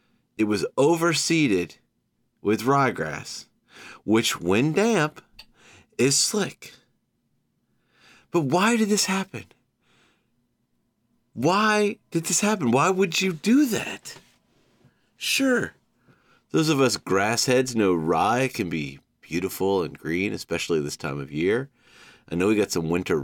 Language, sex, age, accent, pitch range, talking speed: English, male, 30-49, American, 110-150 Hz, 125 wpm